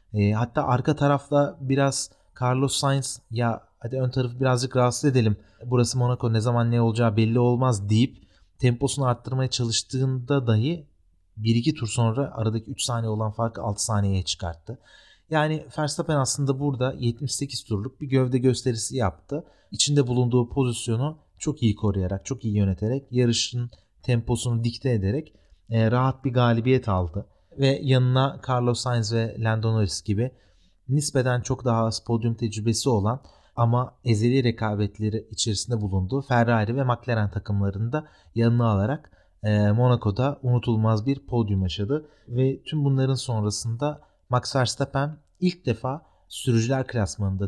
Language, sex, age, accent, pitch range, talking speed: Turkish, male, 30-49, native, 110-135 Hz, 135 wpm